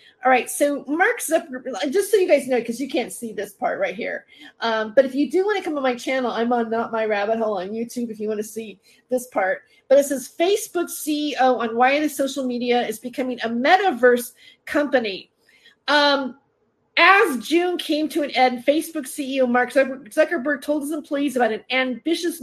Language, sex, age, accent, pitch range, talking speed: English, female, 40-59, American, 240-300 Hz, 205 wpm